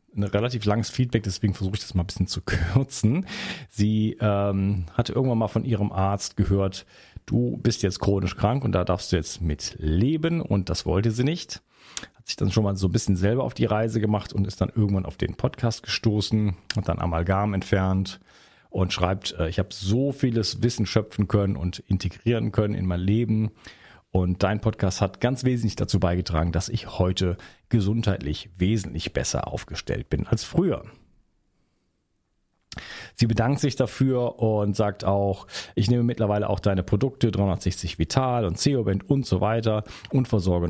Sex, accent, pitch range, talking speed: male, German, 90-115 Hz, 175 wpm